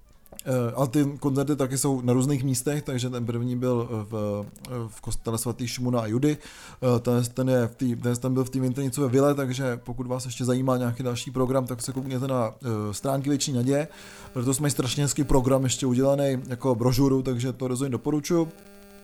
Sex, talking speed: male, 175 wpm